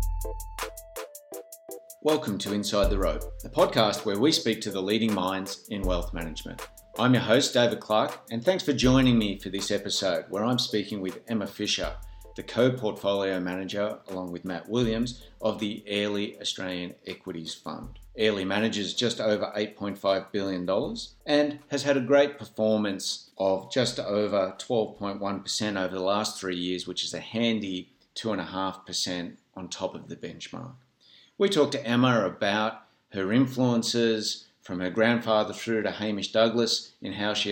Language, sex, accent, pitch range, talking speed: English, male, Australian, 95-115 Hz, 155 wpm